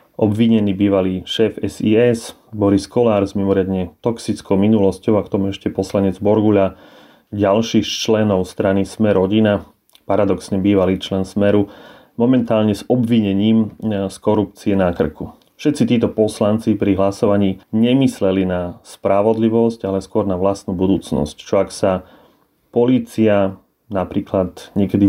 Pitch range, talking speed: 95-110 Hz, 120 wpm